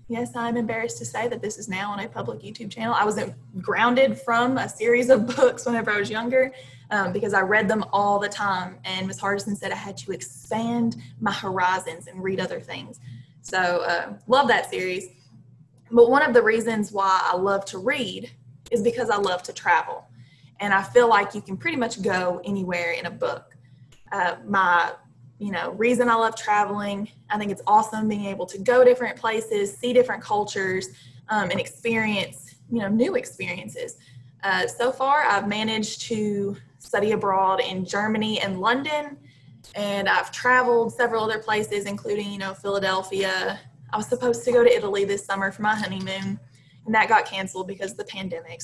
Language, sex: English, female